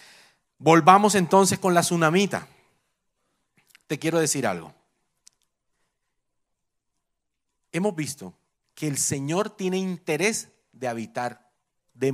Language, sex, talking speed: Spanish, male, 95 wpm